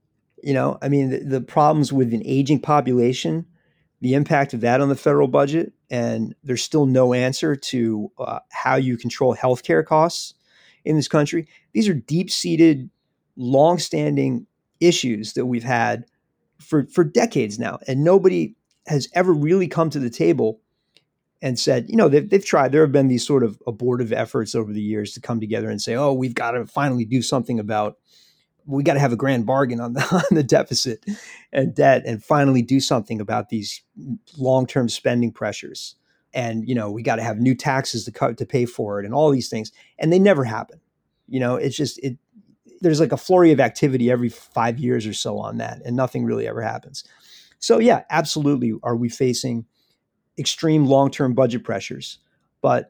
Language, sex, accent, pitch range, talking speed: English, male, American, 120-155 Hz, 185 wpm